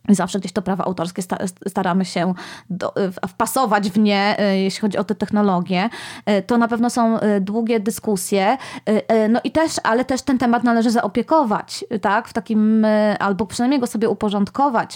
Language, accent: Polish, native